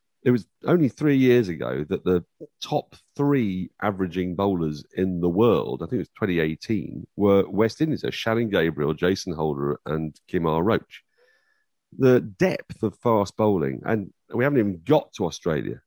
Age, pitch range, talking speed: 40-59, 95-140 Hz, 165 wpm